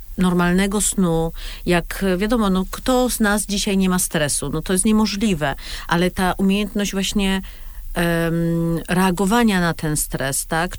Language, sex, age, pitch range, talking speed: Polish, female, 50-69, 175-215 Hz, 145 wpm